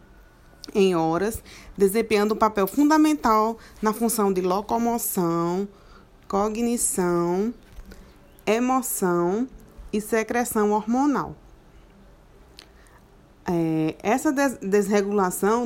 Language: Portuguese